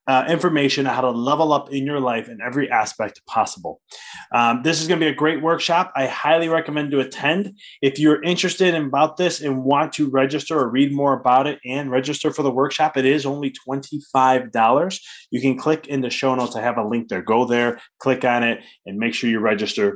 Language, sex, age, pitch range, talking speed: English, male, 20-39, 115-150 Hz, 225 wpm